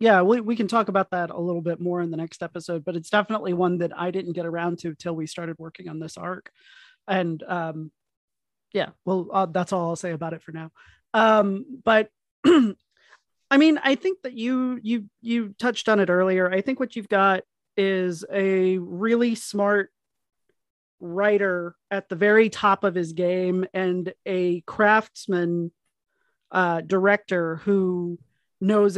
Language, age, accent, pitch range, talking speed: English, 30-49, American, 175-230 Hz, 170 wpm